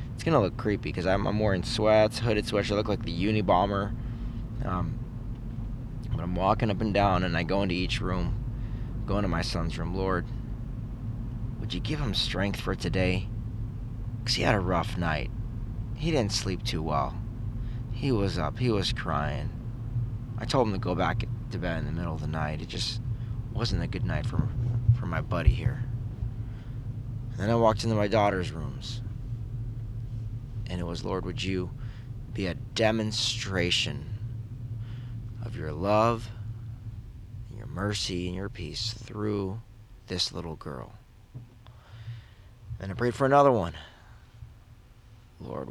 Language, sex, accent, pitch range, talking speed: English, male, American, 95-115 Hz, 160 wpm